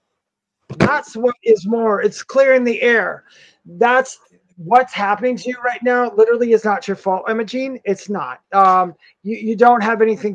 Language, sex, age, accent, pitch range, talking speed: English, male, 30-49, American, 195-235 Hz, 175 wpm